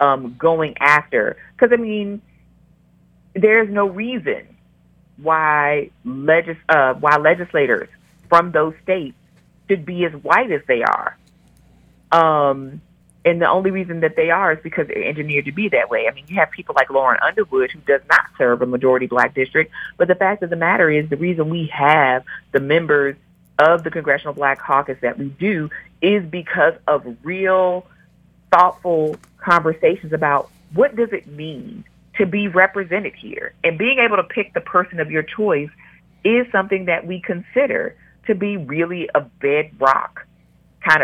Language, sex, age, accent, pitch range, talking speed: English, female, 40-59, American, 145-190 Hz, 165 wpm